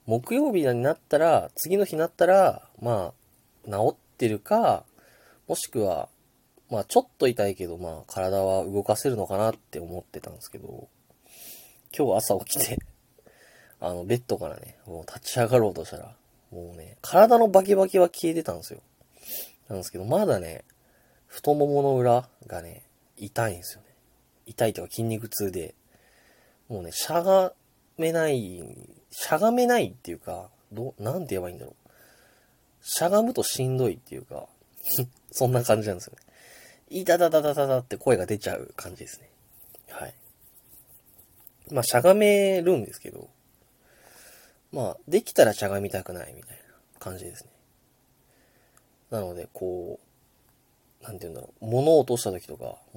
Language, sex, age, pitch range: Japanese, male, 20-39, 100-160 Hz